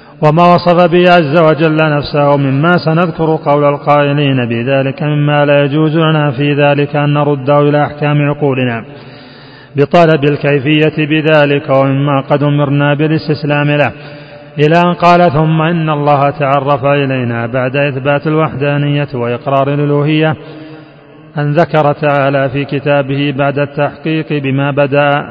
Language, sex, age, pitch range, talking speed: Arabic, male, 30-49, 145-155 Hz, 125 wpm